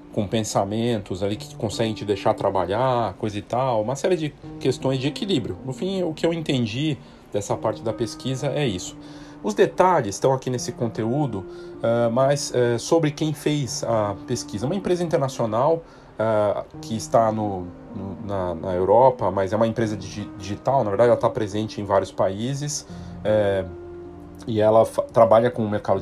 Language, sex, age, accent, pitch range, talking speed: Portuguese, male, 40-59, Brazilian, 105-140 Hz, 155 wpm